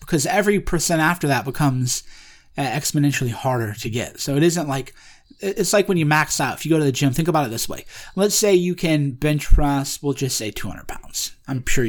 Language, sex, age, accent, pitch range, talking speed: English, male, 30-49, American, 135-175 Hz, 230 wpm